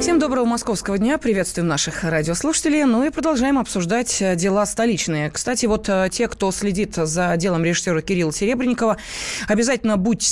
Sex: female